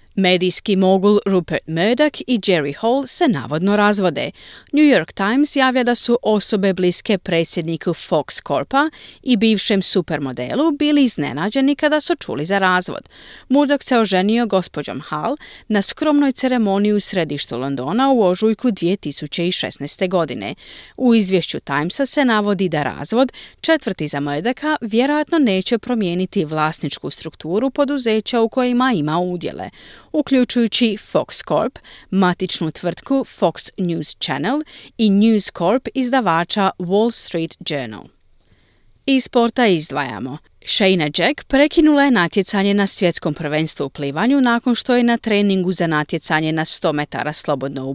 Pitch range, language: 170-255 Hz, Croatian